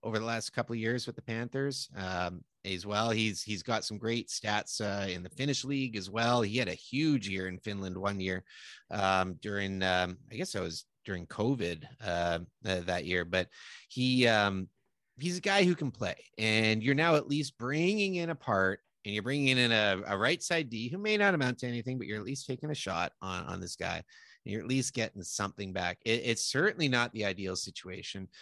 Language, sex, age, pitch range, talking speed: English, male, 30-49, 95-130 Hz, 220 wpm